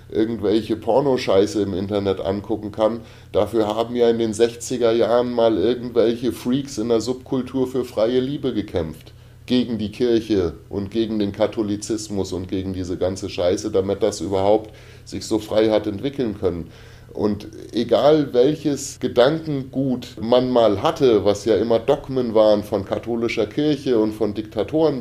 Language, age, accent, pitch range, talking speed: German, 30-49, German, 110-135 Hz, 150 wpm